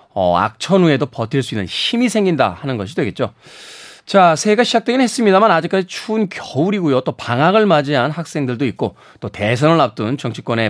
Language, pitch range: Korean, 130-180 Hz